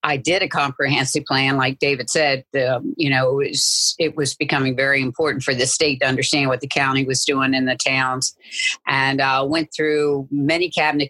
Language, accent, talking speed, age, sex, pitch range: English, American, 200 wpm, 50-69, female, 135-150 Hz